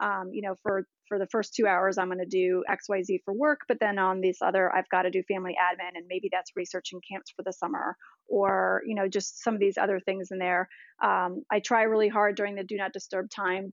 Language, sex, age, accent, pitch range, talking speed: English, female, 30-49, American, 190-225 Hz, 260 wpm